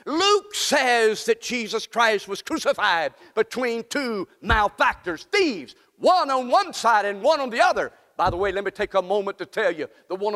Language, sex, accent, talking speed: English, male, American, 190 wpm